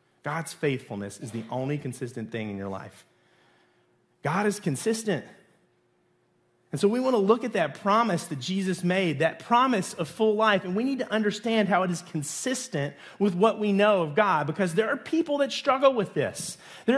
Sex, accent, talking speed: male, American, 190 wpm